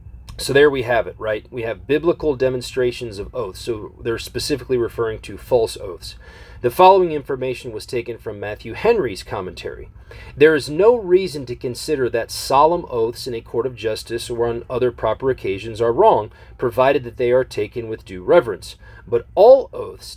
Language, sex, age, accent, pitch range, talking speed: English, male, 40-59, American, 120-175 Hz, 180 wpm